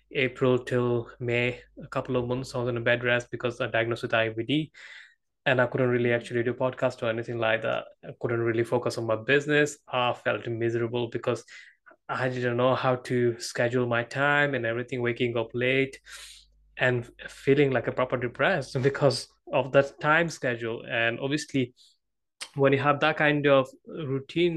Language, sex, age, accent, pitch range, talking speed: English, male, 20-39, Indian, 120-140 Hz, 180 wpm